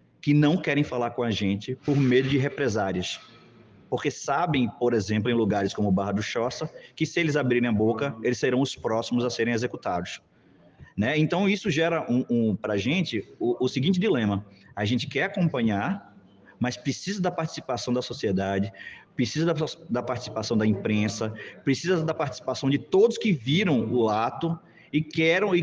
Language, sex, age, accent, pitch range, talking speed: Portuguese, male, 20-39, Brazilian, 115-160 Hz, 180 wpm